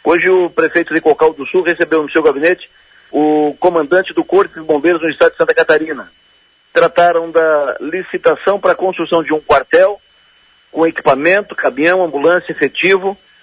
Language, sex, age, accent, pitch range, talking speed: Portuguese, male, 50-69, Brazilian, 160-195 Hz, 160 wpm